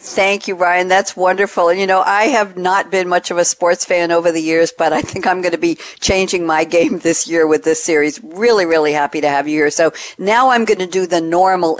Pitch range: 155-190 Hz